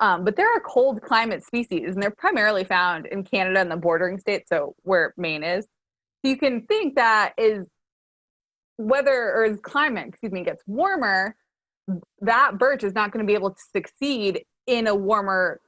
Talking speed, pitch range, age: 185 wpm, 185-240 Hz, 20-39